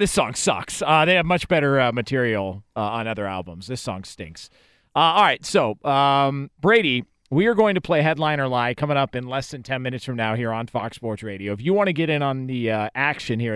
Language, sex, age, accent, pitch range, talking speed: English, male, 40-59, American, 115-150 Hz, 245 wpm